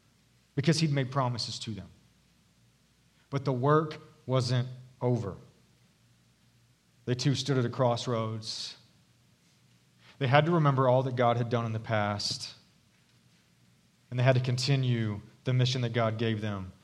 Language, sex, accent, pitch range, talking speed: English, male, American, 115-135 Hz, 145 wpm